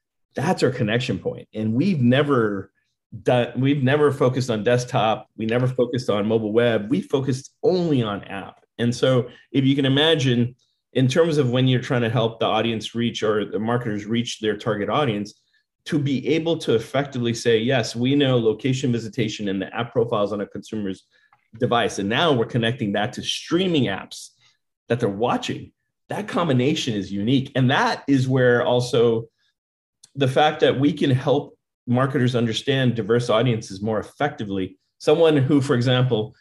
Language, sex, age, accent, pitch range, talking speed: English, male, 30-49, American, 110-135 Hz, 165 wpm